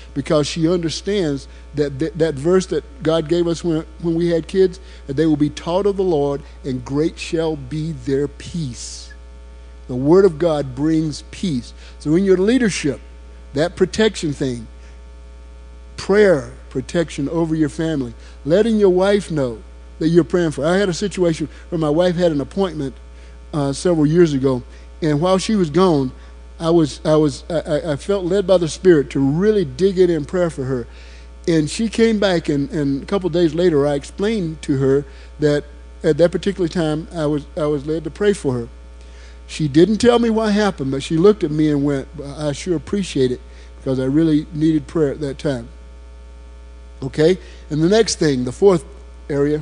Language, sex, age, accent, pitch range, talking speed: English, male, 50-69, American, 125-170 Hz, 190 wpm